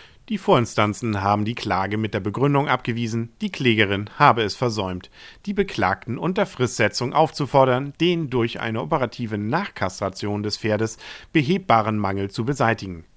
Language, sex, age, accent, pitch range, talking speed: German, male, 50-69, German, 105-150 Hz, 135 wpm